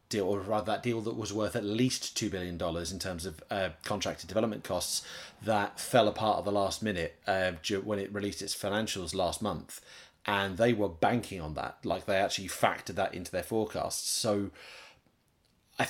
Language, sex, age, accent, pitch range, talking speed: English, male, 30-49, British, 95-110 Hz, 190 wpm